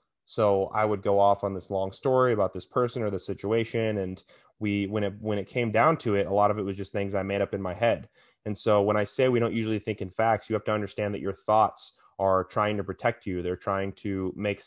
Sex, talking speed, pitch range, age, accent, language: male, 265 wpm, 95-110 Hz, 20-39, American, English